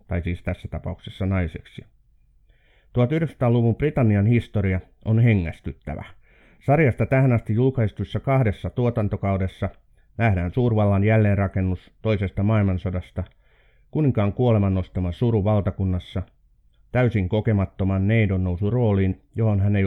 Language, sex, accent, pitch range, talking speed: Finnish, male, native, 95-120 Hz, 105 wpm